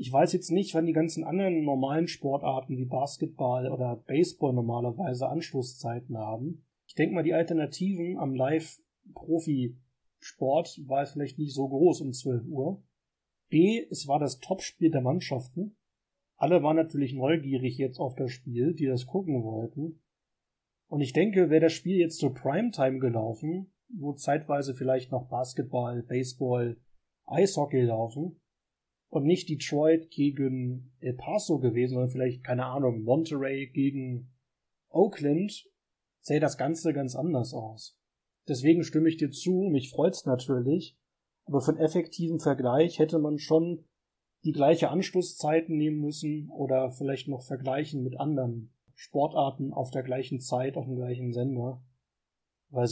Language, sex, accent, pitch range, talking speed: German, male, German, 130-160 Hz, 145 wpm